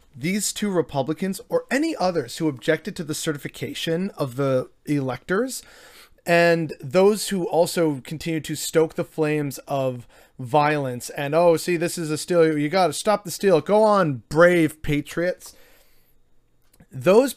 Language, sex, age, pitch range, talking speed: English, male, 30-49, 150-195 Hz, 150 wpm